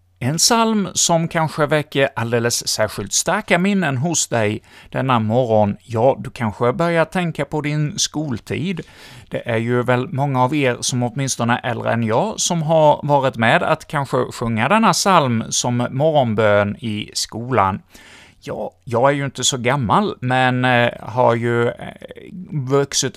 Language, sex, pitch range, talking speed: Swedish, male, 110-145 Hz, 150 wpm